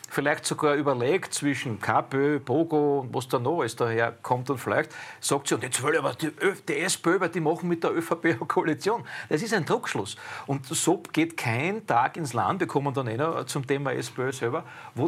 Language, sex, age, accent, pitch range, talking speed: German, male, 40-59, Austrian, 135-165 Hz, 205 wpm